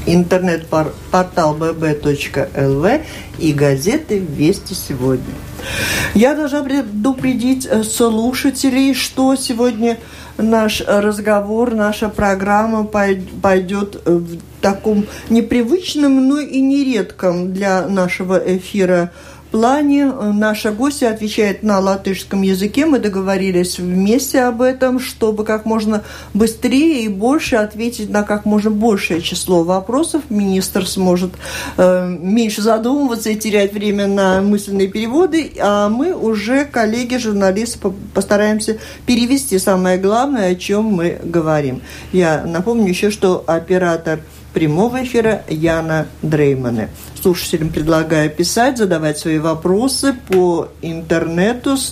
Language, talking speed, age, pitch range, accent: Russian, 110 wpm, 50-69, 185-245 Hz, native